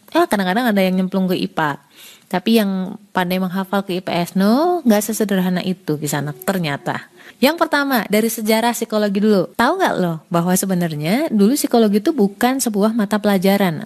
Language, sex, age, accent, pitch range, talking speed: Indonesian, female, 30-49, native, 185-240 Hz, 165 wpm